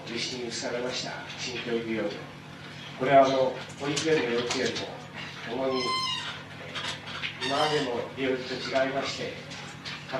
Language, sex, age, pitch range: Japanese, male, 40-59, 125-150 Hz